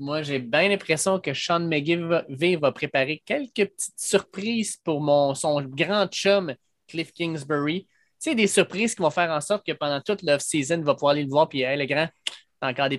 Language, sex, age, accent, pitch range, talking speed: French, male, 20-39, Canadian, 140-175 Hz, 210 wpm